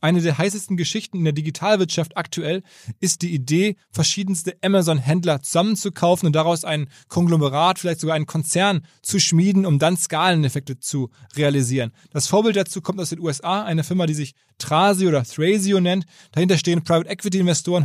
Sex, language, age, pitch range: male, German, 20-39, 160-190 Hz